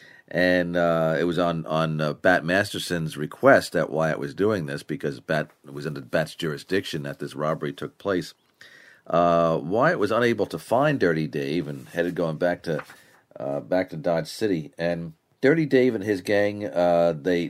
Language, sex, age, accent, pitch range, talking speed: English, male, 40-59, American, 80-95 Hz, 180 wpm